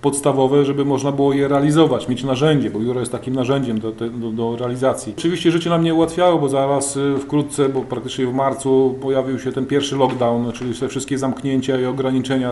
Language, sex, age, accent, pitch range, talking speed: Polish, male, 30-49, native, 130-150 Hz, 190 wpm